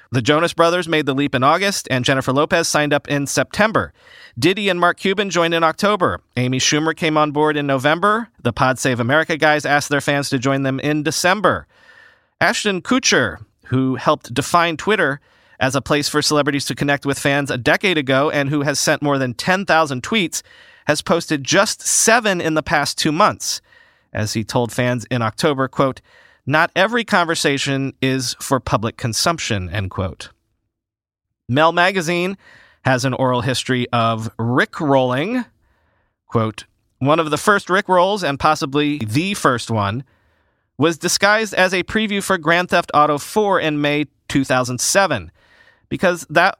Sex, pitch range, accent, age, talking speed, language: male, 130-170 Hz, American, 40-59, 165 wpm, English